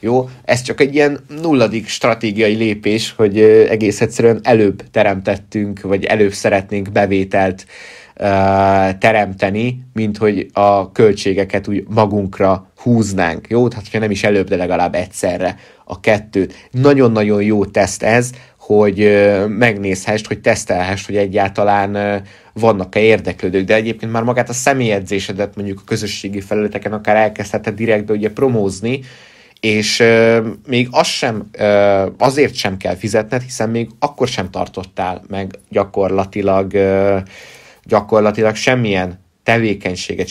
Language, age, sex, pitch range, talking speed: Hungarian, 20-39, male, 100-115 Hz, 130 wpm